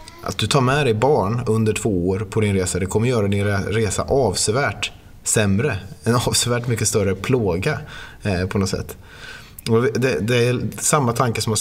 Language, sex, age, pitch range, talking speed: Swedish, male, 30-49, 95-115 Hz, 195 wpm